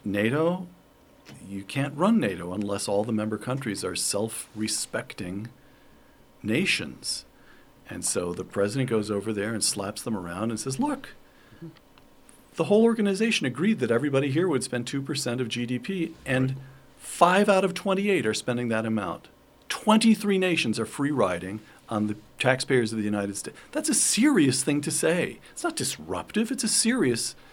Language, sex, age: English, male, 50-69